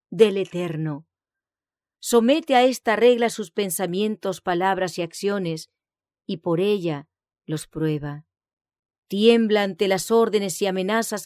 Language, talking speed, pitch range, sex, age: English, 115 wpm, 170-230 Hz, female, 40-59